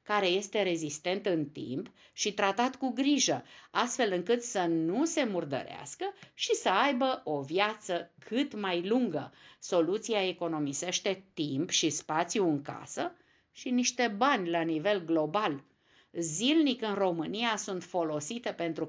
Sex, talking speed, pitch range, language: female, 135 wpm, 165-235 Hz, Romanian